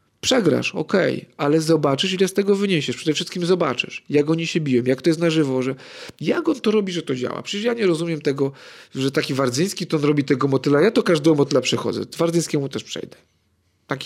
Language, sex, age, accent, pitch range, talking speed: Polish, male, 40-59, native, 130-170 Hz, 220 wpm